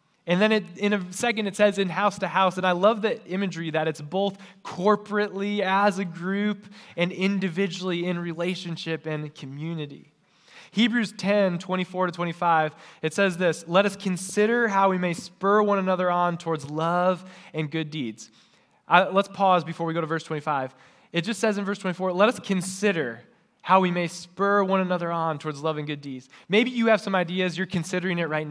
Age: 20-39